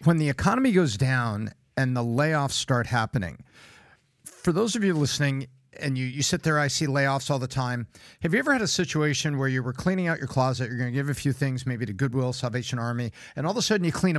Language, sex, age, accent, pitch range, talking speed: English, male, 50-69, American, 125-155 Hz, 245 wpm